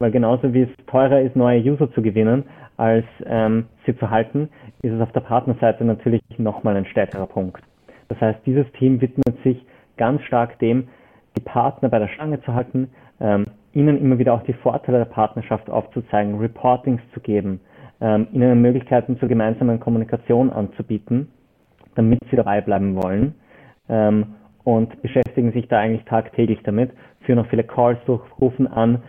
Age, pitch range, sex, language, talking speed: 30-49, 110-130 Hz, male, German, 165 wpm